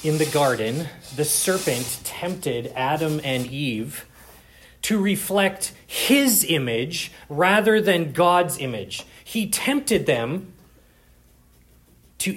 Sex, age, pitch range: male, 30-49, 150-220 Hz